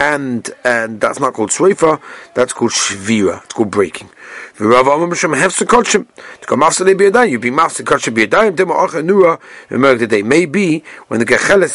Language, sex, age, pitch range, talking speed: English, male, 40-59, 130-190 Hz, 125 wpm